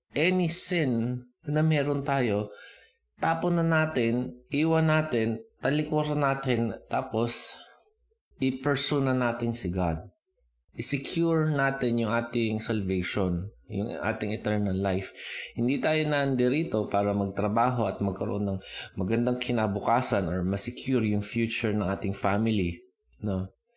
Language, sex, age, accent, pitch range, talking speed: Filipino, male, 20-39, native, 100-130 Hz, 115 wpm